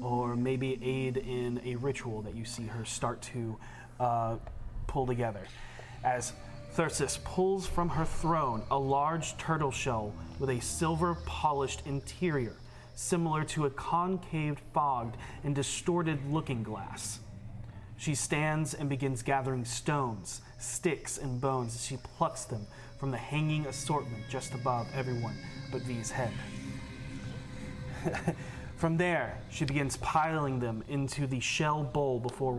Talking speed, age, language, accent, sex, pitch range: 135 wpm, 30-49, English, American, male, 120-145 Hz